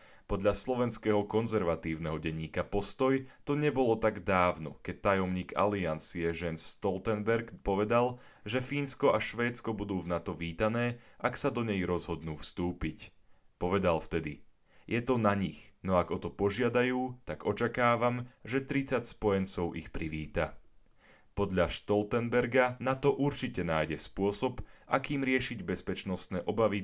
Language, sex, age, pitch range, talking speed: Slovak, male, 10-29, 85-120 Hz, 125 wpm